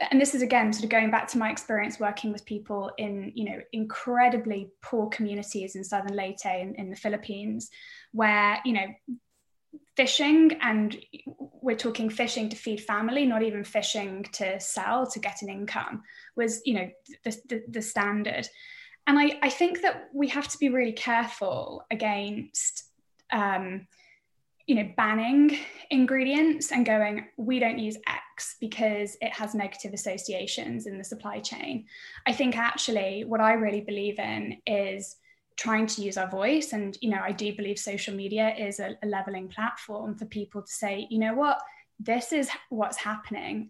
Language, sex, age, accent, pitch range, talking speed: English, female, 10-29, British, 205-250 Hz, 170 wpm